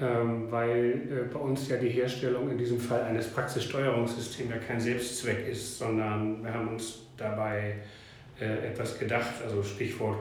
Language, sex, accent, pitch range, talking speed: German, male, German, 120-140 Hz, 140 wpm